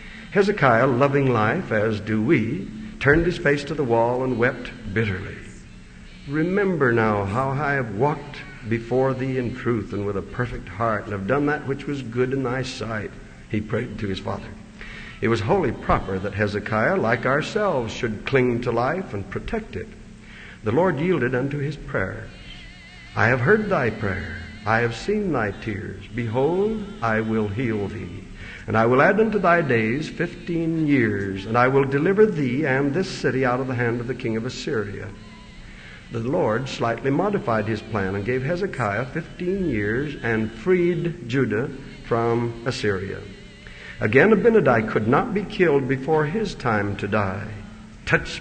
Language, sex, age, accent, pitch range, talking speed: English, male, 60-79, American, 110-145 Hz, 165 wpm